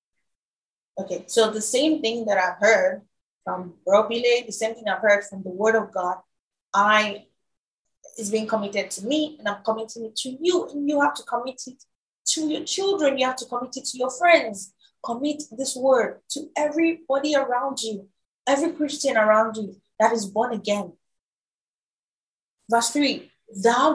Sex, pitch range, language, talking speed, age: female, 215-270 Hz, English, 170 wpm, 20-39